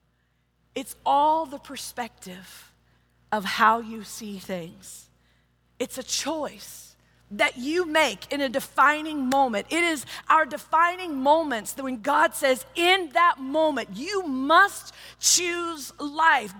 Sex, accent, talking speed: female, American, 125 wpm